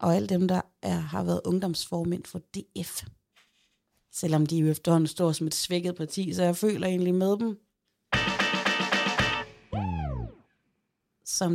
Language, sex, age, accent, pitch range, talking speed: Danish, female, 30-49, native, 180-225 Hz, 135 wpm